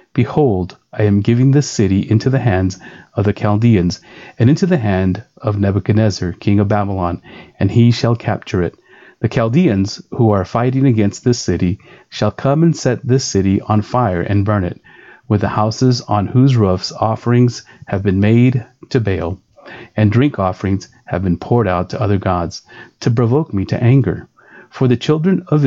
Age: 30-49